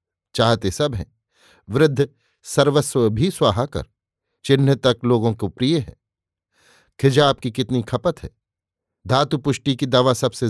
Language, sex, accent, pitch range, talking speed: Hindi, male, native, 115-145 Hz, 135 wpm